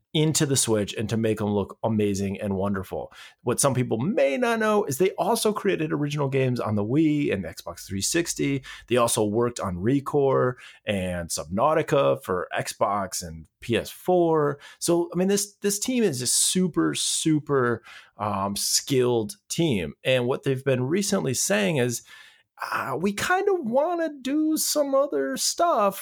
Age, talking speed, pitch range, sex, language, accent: 30-49, 160 wpm, 115-175 Hz, male, English, American